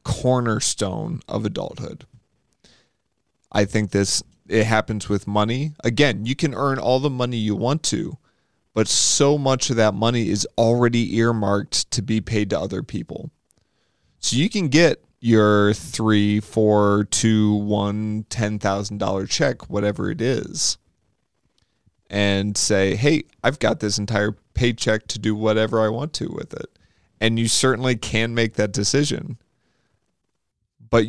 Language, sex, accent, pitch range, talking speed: English, male, American, 105-120 Hz, 140 wpm